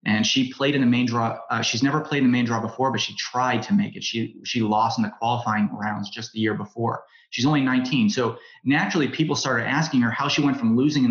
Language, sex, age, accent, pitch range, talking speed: English, male, 30-49, American, 115-140 Hz, 260 wpm